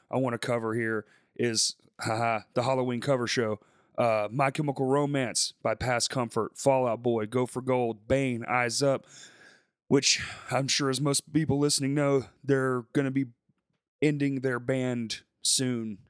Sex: male